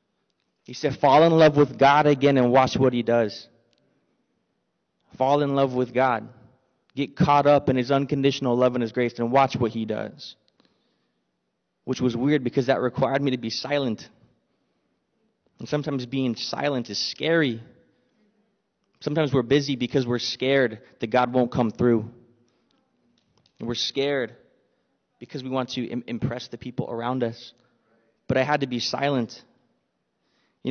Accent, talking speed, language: American, 150 wpm, English